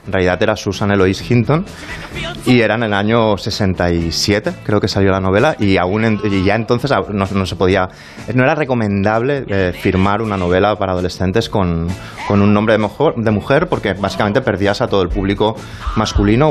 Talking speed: 190 wpm